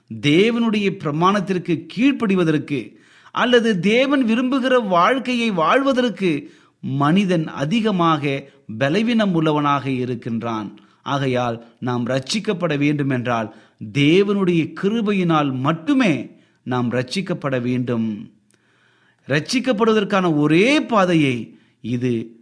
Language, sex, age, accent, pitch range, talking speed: Tamil, male, 30-49, native, 120-190 Hz, 70 wpm